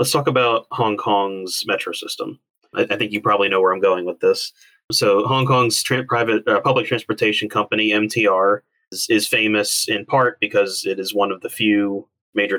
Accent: American